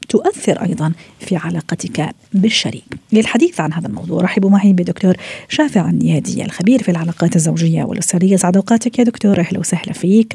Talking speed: 150 wpm